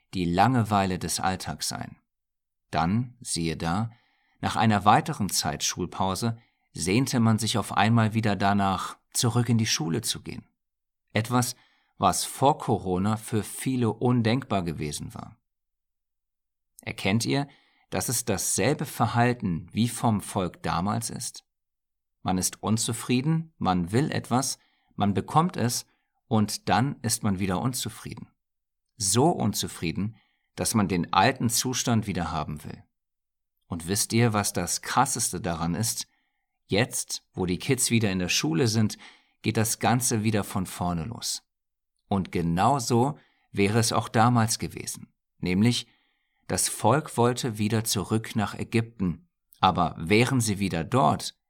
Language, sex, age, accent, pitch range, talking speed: German, male, 50-69, German, 95-120 Hz, 135 wpm